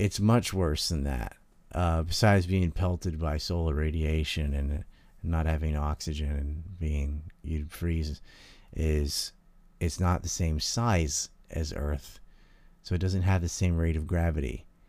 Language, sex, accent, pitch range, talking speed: English, male, American, 80-90 Hz, 150 wpm